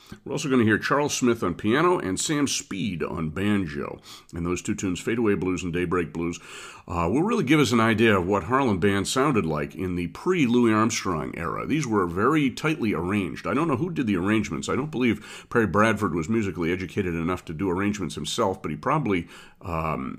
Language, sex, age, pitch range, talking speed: English, male, 40-59, 90-115 Hz, 210 wpm